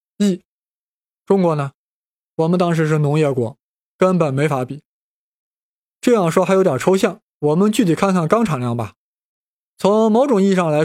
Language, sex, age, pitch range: Chinese, male, 20-39, 155-205 Hz